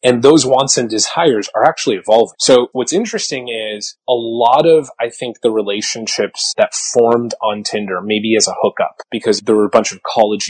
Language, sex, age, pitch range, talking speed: English, male, 30-49, 105-140 Hz, 195 wpm